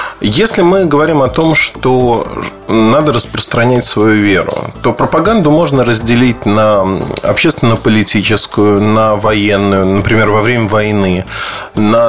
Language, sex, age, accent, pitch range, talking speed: Russian, male, 20-39, native, 105-140 Hz, 115 wpm